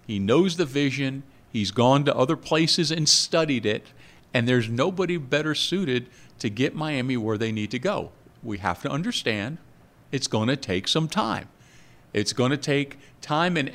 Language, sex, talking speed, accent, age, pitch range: English, male, 180 wpm, American, 50-69, 105-160 Hz